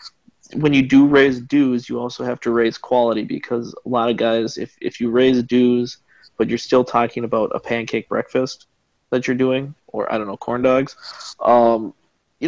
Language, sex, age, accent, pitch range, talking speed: English, male, 20-39, American, 115-130 Hz, 190 wpm